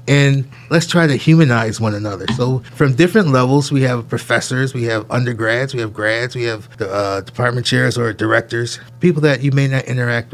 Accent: American